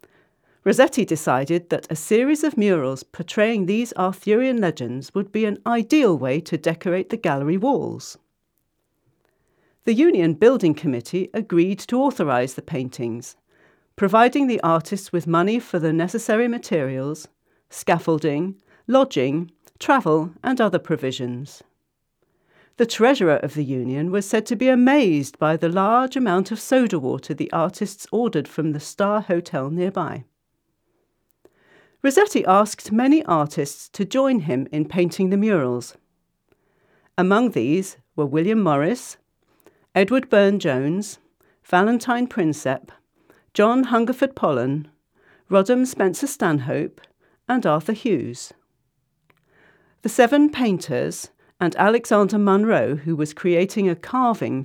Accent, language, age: British, English, 40-59